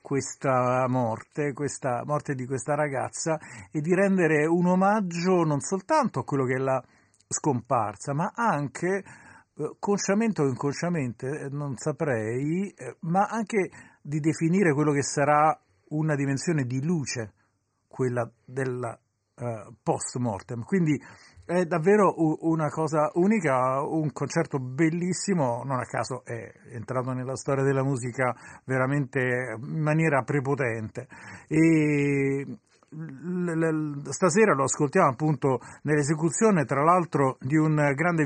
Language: Italian